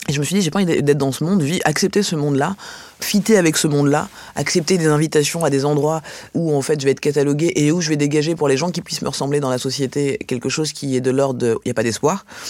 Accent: French